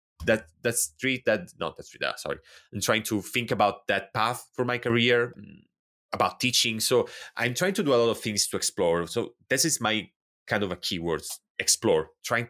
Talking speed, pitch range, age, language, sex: 200 wpm, 90-115 Hz, 30-49, English, male